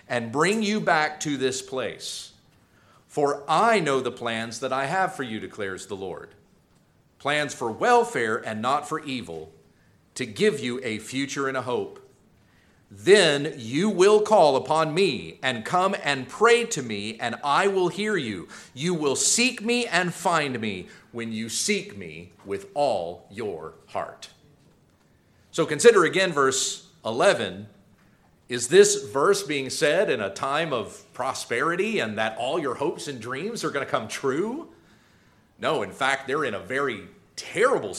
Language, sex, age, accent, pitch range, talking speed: English, male, 40-59, American, 115-180 Hz, 160 wpm